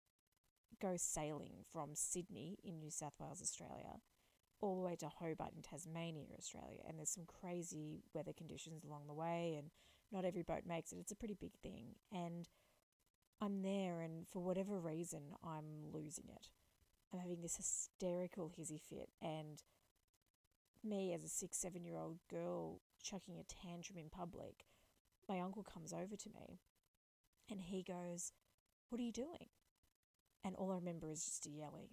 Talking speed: 165 wpm